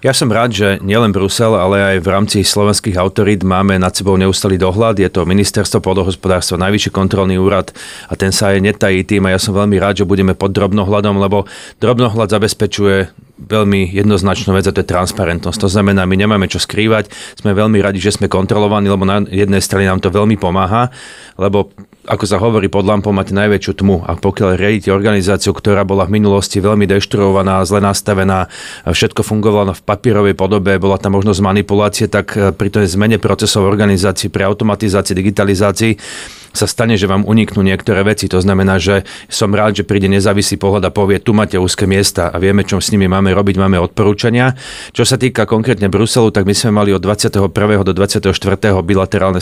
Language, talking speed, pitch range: Slovak, 185 wpm, 95-105 Hz